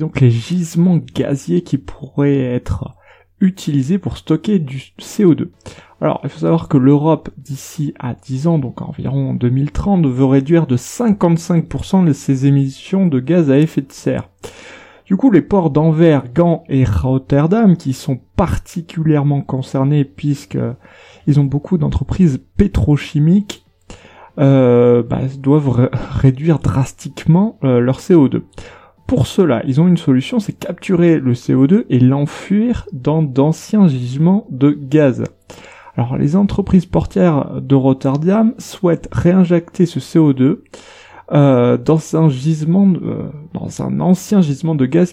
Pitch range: 135-175 Hz